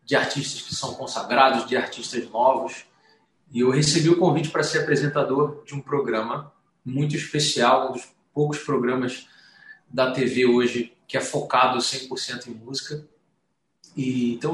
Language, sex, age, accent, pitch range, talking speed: Portuguese, male, 20-39, Brazilian, 115-140 Hz, 150 wpm